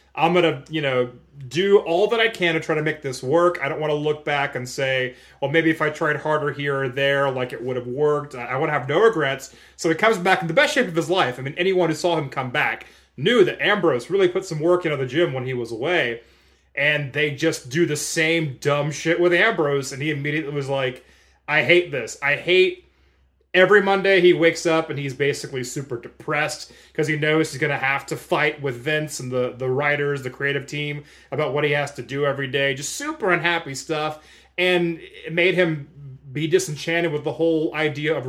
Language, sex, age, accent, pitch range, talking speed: English, male, 30-49, American, 140-170 Hz, 230 wpm